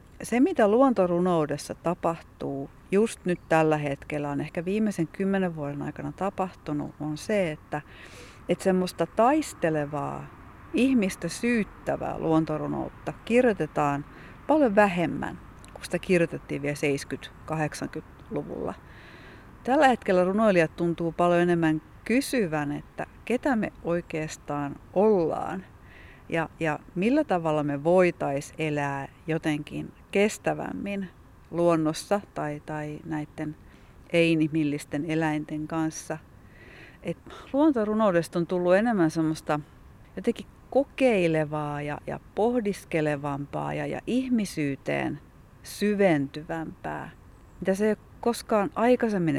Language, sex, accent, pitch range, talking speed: Finnish, female, native, 150-200 Hz, 100 wpm